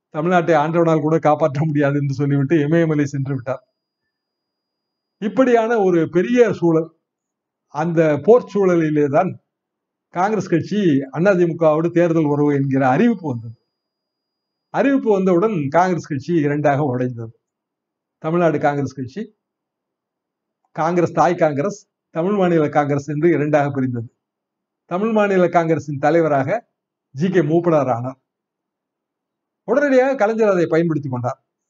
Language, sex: Tamil, male